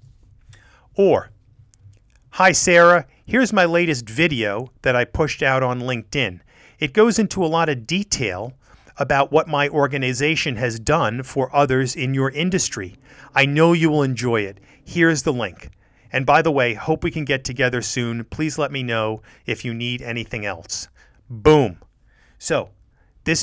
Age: 40-59